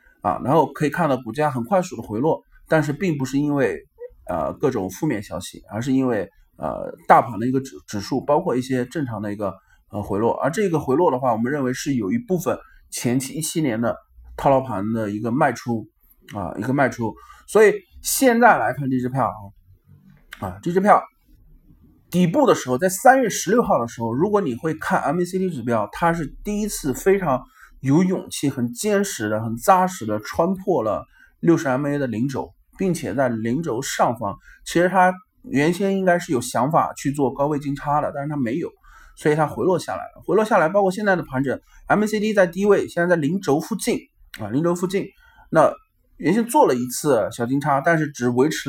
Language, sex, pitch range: Chinese, male, 125-185 Hz